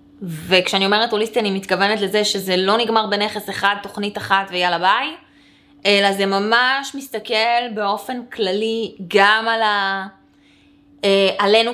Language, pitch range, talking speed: Hebrew, 175-230 Hz, 130 wpm